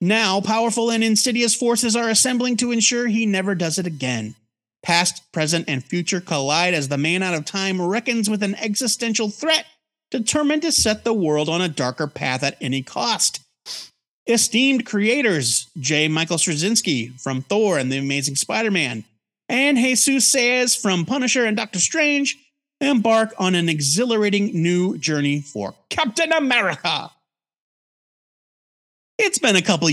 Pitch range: 160-240 Hz